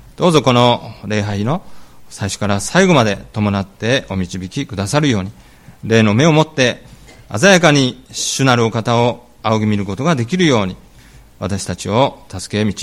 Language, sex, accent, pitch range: Japanese, male, native, 95-140 Hz